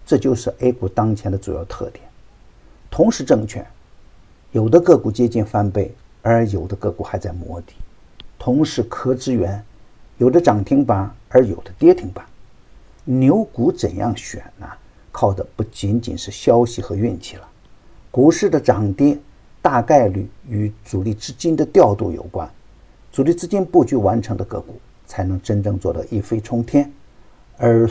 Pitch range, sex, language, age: 100-130 Hz, male, Chinese, 50-69